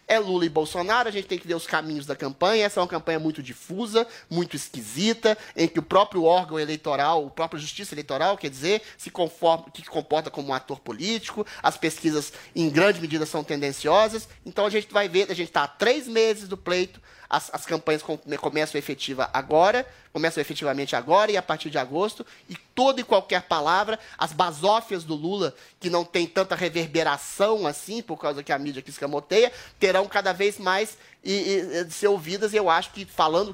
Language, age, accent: Portuguese, 30-49, Brazilian